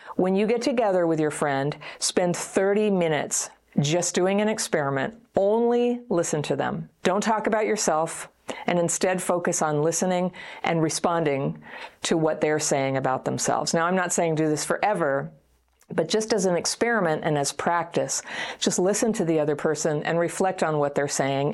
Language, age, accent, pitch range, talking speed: English, 50-69, American, 150-200 Hz, 175 wpm